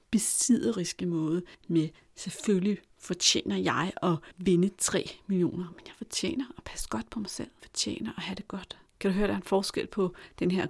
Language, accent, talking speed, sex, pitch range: Danish, native, 195 wpm, female, 175-225 Hz